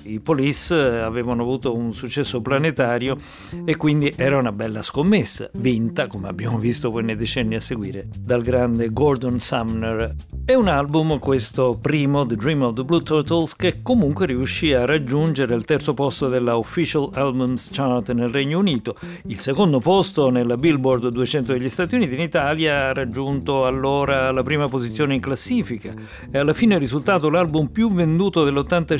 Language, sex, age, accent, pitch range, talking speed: Italian, male, 50-69, native, 120-155 Hz, 165 wpm